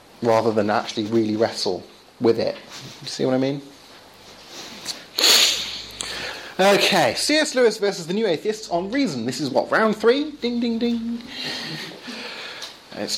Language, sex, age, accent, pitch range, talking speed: English, male, 30-49, British, 145-205 Hz, 130 wpm